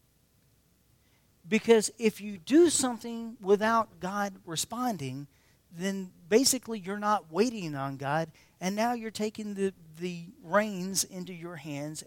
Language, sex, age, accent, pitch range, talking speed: English, male, 50-69, American, 130-180 Hz, 125 wpm